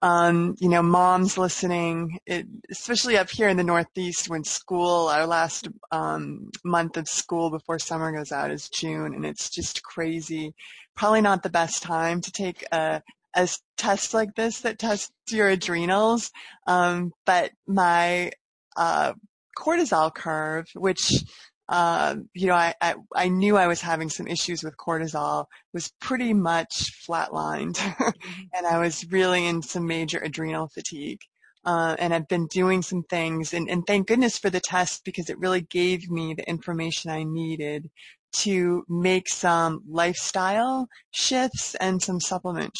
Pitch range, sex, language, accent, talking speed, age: 165-190 Hz, female, English, American, 155 wpm, 20-39